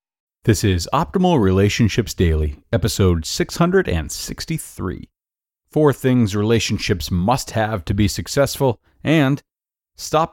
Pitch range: 95-120 Hz